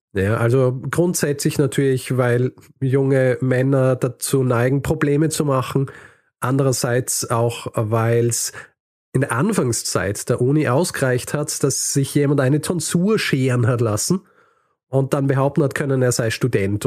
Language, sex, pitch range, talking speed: German, male, 120-150 Hz, 140 wpm